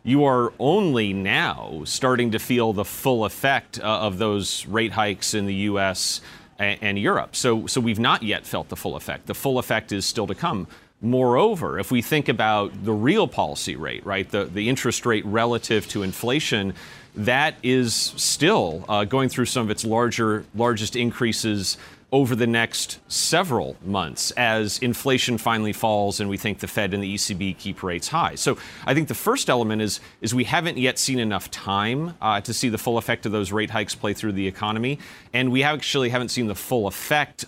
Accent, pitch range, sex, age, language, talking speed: American, 100-125 Hz, male, 30-49, English, 195 wpm